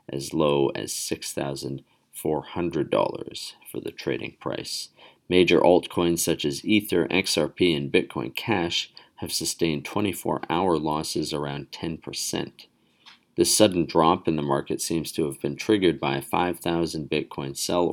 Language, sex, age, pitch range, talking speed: English, male, 40-59, 70-90 Hz, 130 wpm